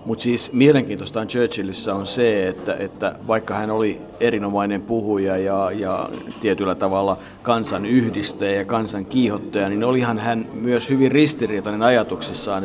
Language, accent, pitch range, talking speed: Finnish, native, 105-125 Hz, 135 wpm